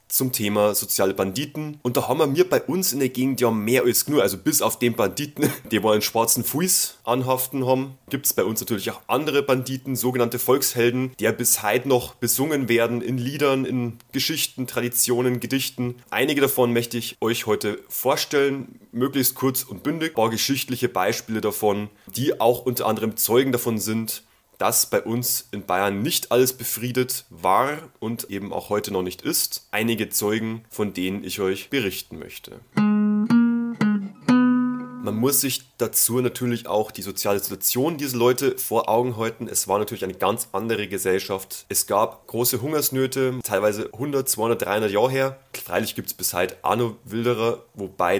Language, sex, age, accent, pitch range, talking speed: German, male, 30-49, German, 105-130 Hz, 175 wpm